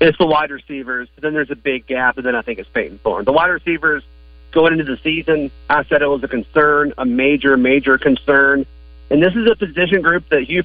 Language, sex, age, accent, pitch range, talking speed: English, male, 40-59, American, 130-165 Hz, 230 wpm